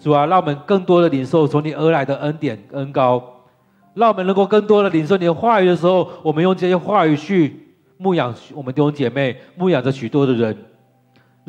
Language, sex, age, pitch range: Chinese, male, 40-59, 120-165 Hz